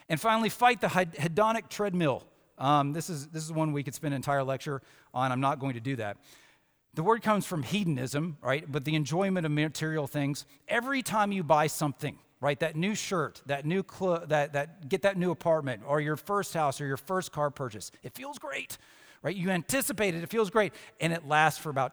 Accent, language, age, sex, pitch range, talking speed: American, English, 40-59, male, 140-190 Hz, 215 wpm